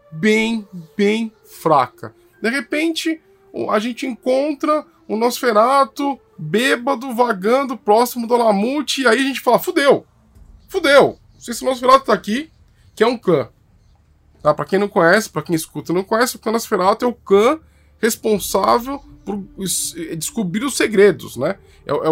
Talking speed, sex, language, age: 150 wpm, male, Portuguese, 10-29